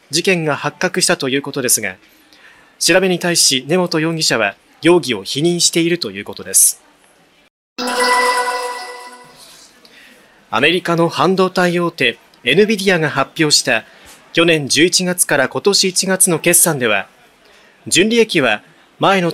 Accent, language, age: native, Japanese, 30-49